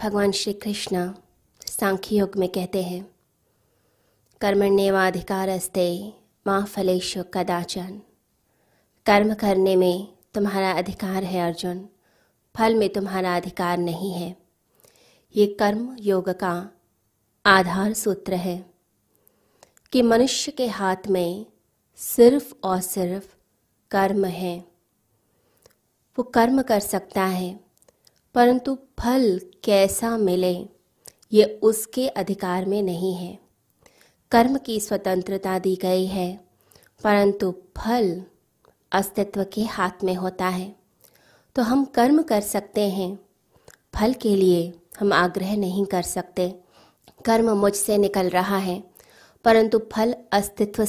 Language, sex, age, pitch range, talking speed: Hindi, female, 20-39, 185-210 Hz, 110 wpm